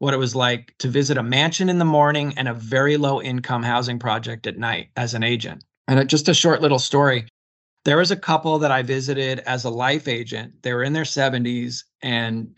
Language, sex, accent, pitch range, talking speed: English, male, American, 115-140 Hz, 215 wpm